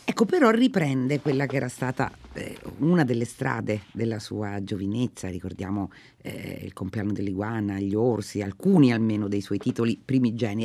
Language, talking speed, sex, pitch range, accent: Italian, 150 wpm, female, 115-155 Hz, native